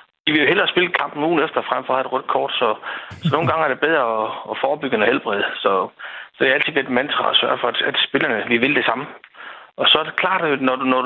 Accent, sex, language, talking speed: native, male, Danish, 280 wpm